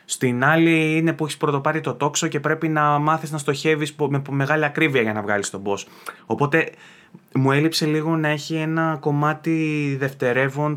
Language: Greek